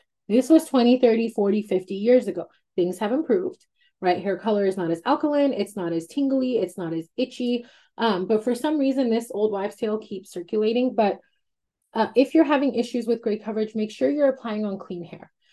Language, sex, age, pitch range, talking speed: English, female, 30-49, 190-255 Hz, 205 wpm